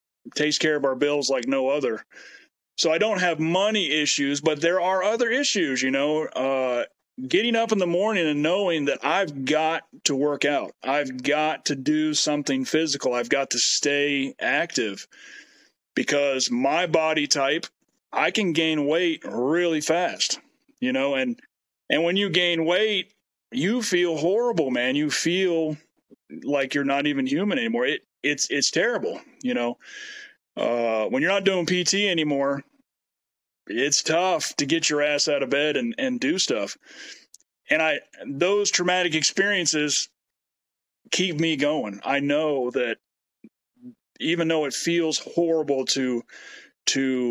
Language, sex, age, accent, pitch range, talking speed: English, male, 40-59, American, 140-200 Hz, 150 wpm